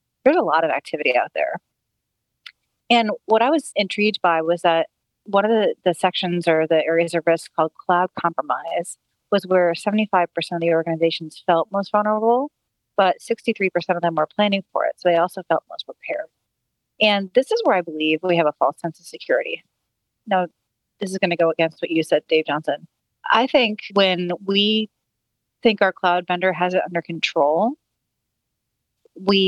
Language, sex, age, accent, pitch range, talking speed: English, female, 30-49, American, 165-205 Hz, 180 wpm